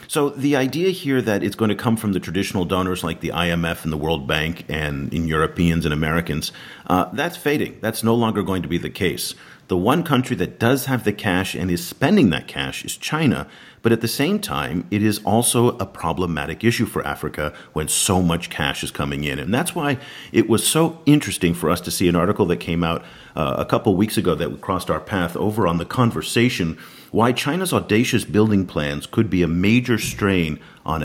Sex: male